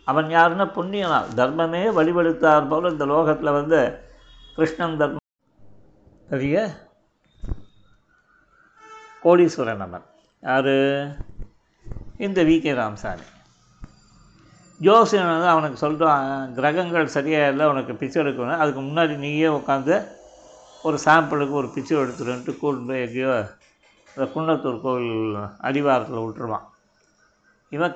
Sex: male